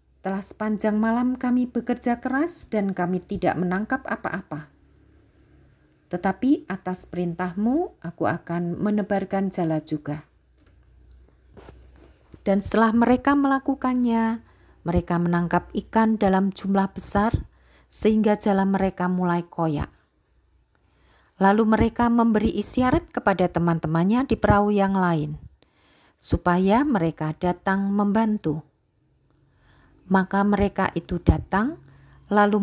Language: Indonesian